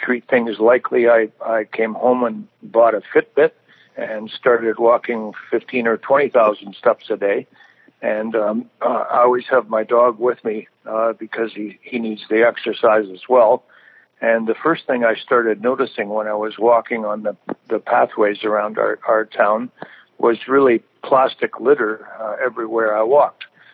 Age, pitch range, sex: 60-79, 110-120 Hz, male